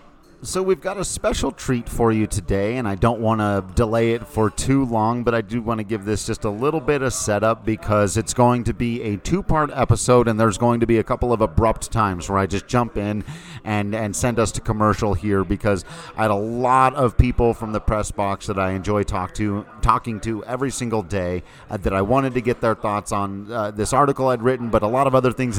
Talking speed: 240 wpm